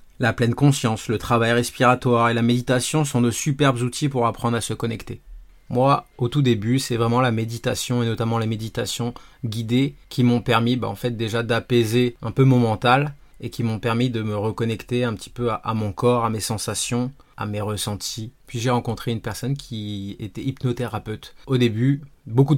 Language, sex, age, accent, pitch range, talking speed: French, male, 20-39, French, 110-125 Hz, 195 wpm